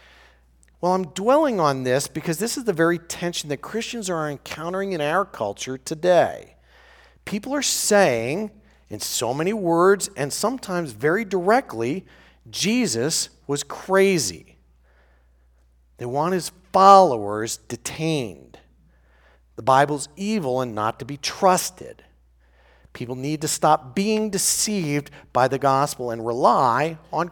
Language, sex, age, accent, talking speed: English, male, 40-59, American, 125 wpm